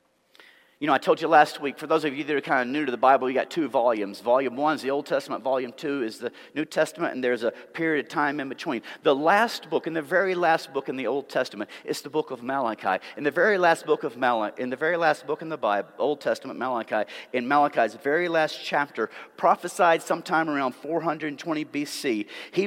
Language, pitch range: English, 130-165 Hz